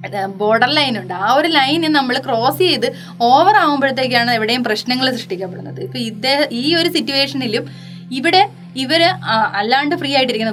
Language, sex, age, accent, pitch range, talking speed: Malayalam, female, 20-39, native, 235-320 Hz, 130 wpm